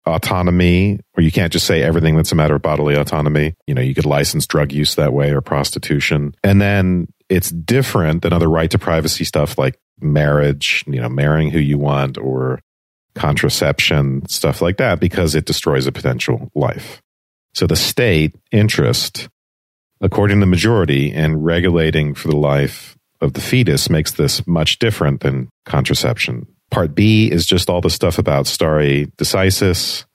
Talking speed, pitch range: 170 wpm, 70-90 Hz